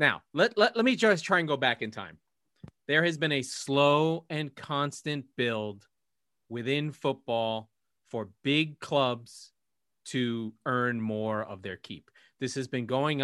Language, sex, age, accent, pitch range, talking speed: English, male, 30-49, American, 120-150 Hz, 160 wpm